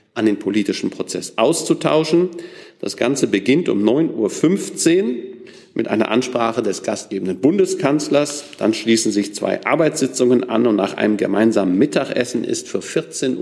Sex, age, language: male, 50-69, German